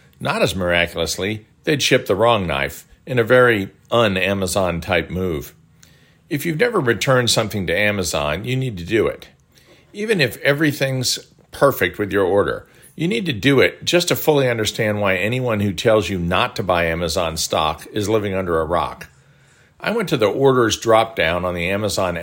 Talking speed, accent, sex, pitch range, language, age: 175 wpm, American, male, 95-130 Hz, English, 50-69